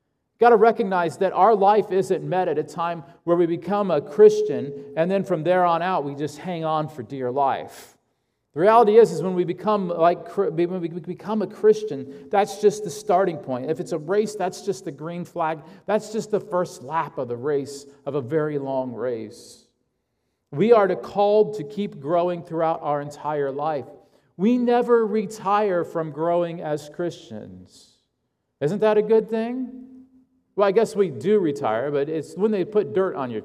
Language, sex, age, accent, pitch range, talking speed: English, male, 40-59, American, 145-205 Hz, 185 wpm